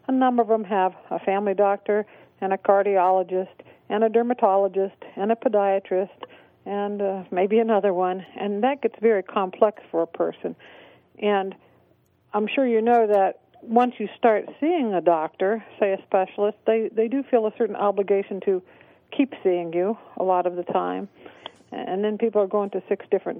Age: 50-69